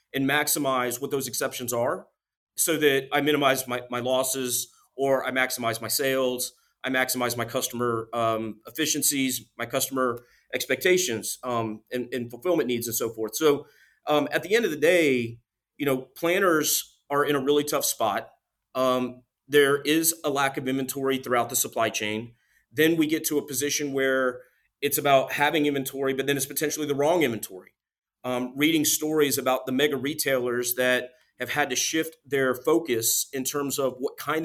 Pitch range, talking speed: 125-145 Hz, 175 wpm